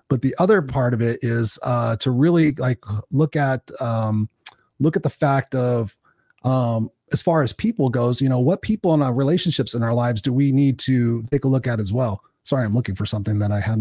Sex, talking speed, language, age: male, 230 wpm, English, 30-49